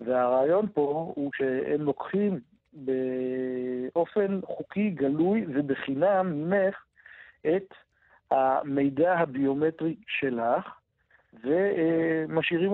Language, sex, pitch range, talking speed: Hebrew, male, 135-170 Hz, 70 wpm